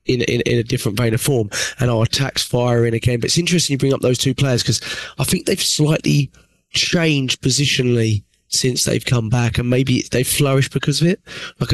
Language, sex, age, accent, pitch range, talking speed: English, male, 20-39, British, 120-145 Hz, 220 wpm